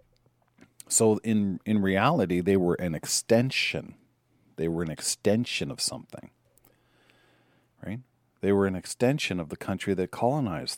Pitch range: 95-125 Hz